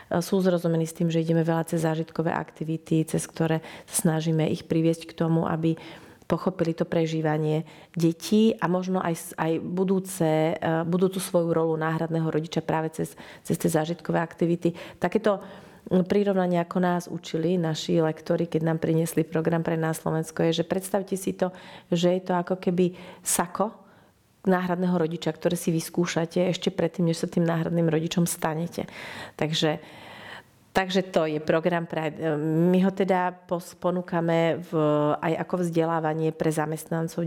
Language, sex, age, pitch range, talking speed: Slovak, female, 30-49, 160-180 Hz, 150 wpm